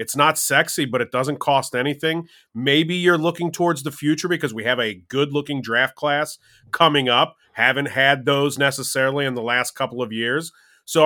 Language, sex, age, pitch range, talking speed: English, male, 30-49, 135-165 Hz, 185 wpm